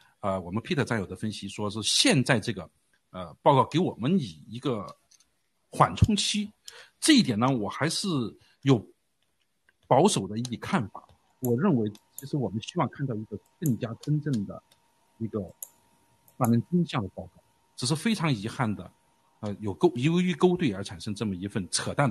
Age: 50-69